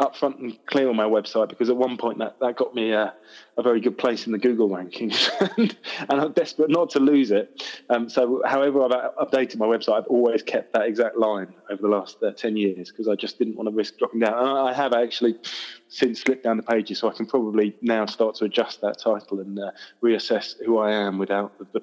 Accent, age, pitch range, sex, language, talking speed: British, 20-39, 105-130 Hz, male, English, 235 wpm